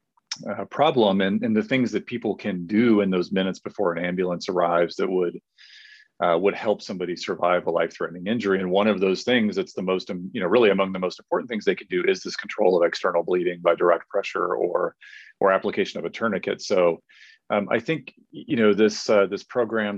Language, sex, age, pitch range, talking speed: English, male, 40-59, 90-125 Hz, 220 wpm